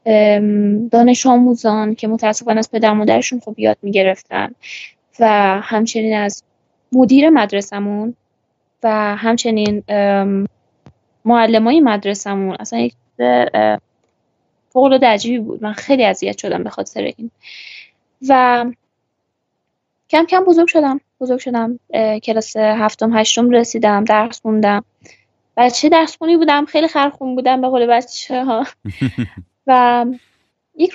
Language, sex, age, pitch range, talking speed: Persian, female, 20-39, 210-260 Hz, 110 wpm